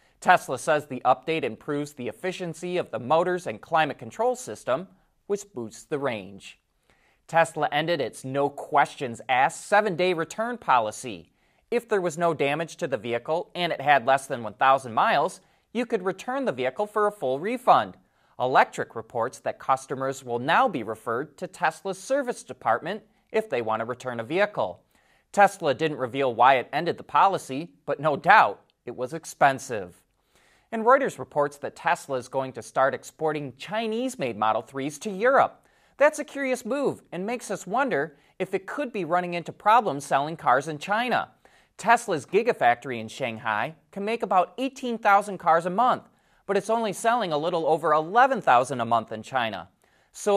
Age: 20-39